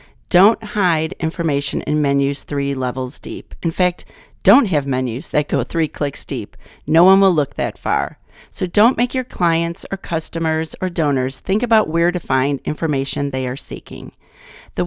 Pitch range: 150-195 Hz